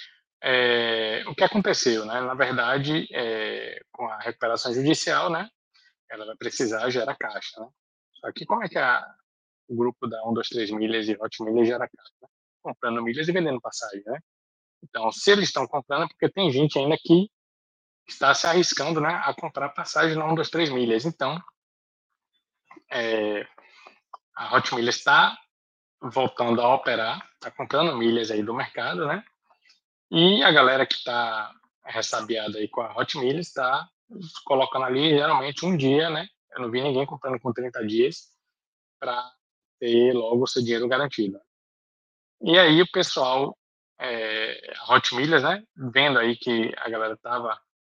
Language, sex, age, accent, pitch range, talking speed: Portuguese, male, 20-39, Brazilian, 115-155 Hz, 160 wpm